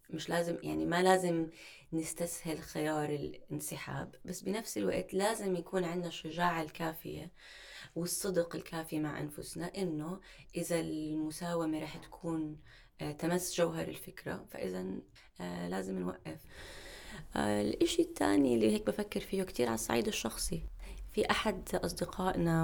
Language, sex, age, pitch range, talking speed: Arabic, female, 20-39, 155-205 Hz, 115 wpm